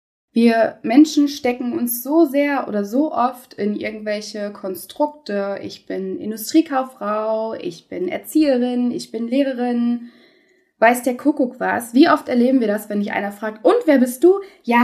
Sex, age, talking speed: female, 20-39, 160 wpm